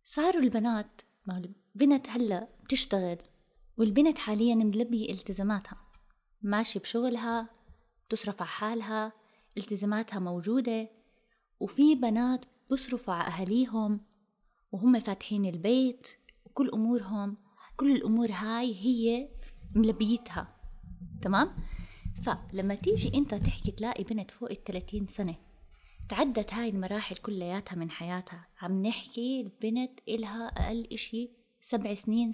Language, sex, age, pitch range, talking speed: Arabic, female, 20-39, 200-240 Hz, 100 wpm